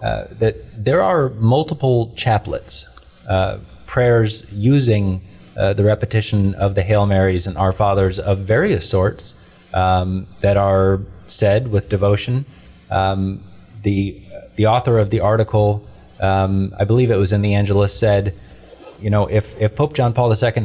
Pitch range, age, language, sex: 100-120 Hz, 20-39, English, male